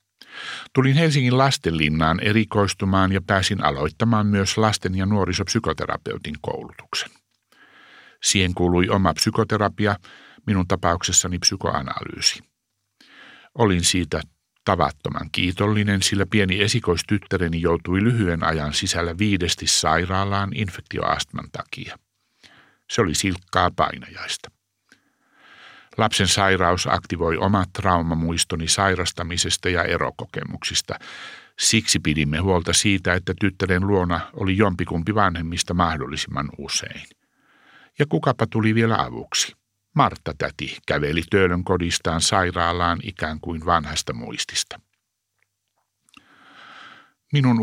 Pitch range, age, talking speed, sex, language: 85-105 Hz, 60-79, 95 wpm, male, Finnish